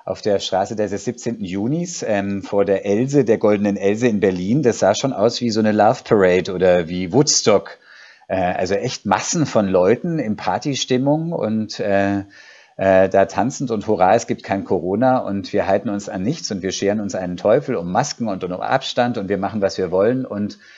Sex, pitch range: male, 95-125 Hz